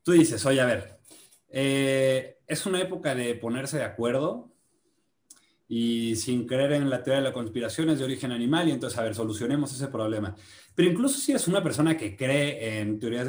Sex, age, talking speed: male, 30-49, 195 wpm